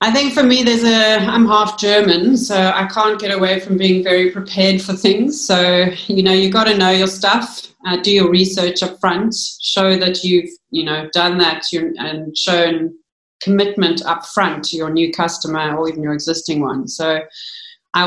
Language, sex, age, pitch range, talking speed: English, female, 30-49, 160-195 Hz, 195 wpm